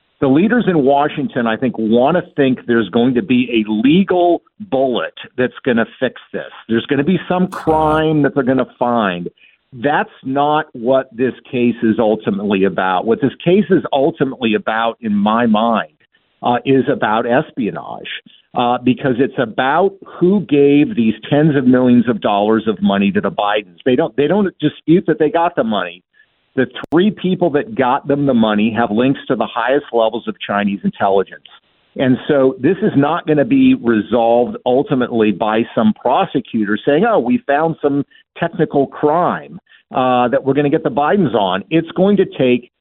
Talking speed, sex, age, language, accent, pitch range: 180 wpm, male, 50-69, English, American, 115-155 Hz